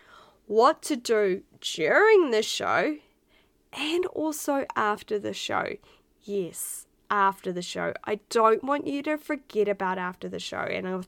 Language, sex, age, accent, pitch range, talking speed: English, female, 10-29, Australian, 205-295 Hz, 145 wpm